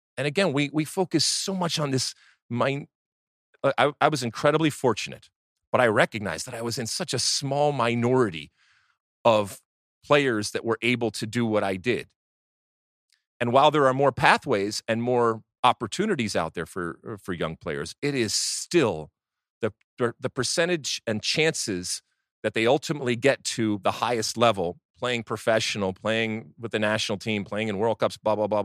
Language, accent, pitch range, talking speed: English, American, 110-155 Hz, 170 wpm